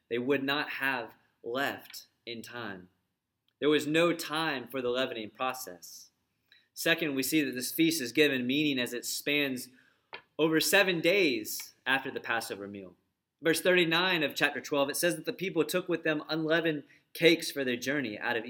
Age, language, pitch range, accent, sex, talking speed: 30-49, English, 120-150 Hz, American, male, 175 wpm